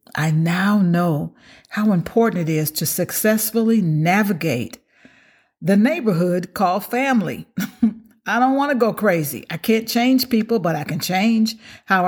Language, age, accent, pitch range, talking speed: English, 50-69, American, 160-210 Hz, 145 wpm